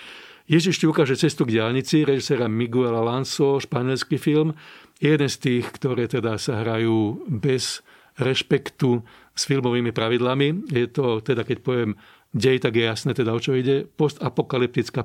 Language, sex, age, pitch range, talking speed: Slovak, male, 40-59, 115-140 Hz, 150 wpm